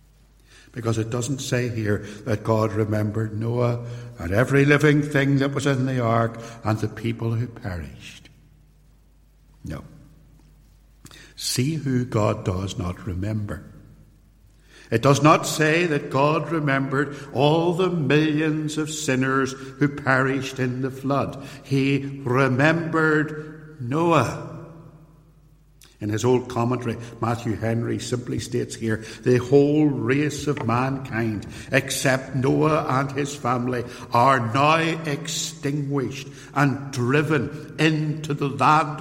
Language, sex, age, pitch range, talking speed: English, male, 60-79, 115-145 Hz, 120 wpm